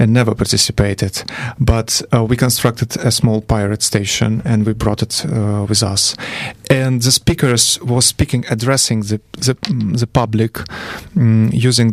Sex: male